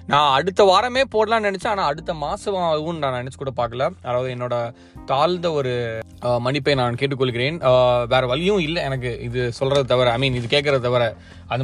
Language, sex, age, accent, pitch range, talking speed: Tamil, male, 20-39, native, 125-150 Hz, 165 wpm